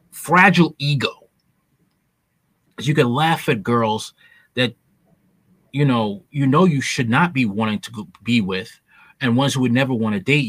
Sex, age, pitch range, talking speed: male, 30-49, 115-165 Hz, 160 wpm